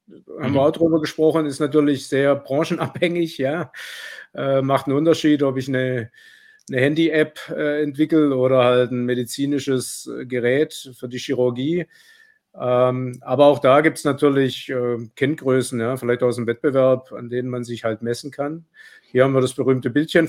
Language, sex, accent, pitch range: German, male, German, 120-150 Hz